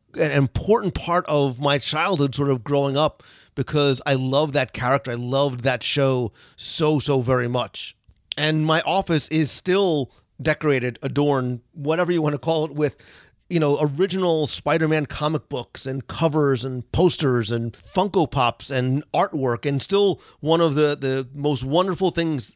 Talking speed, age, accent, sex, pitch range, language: 160 wpm, 40-59, American, male, 130-155 Hz, English